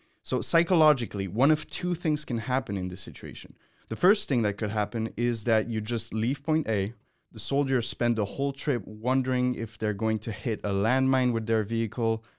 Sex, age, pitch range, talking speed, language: male, 20-39, 105-130 Hz, 200 wpm, English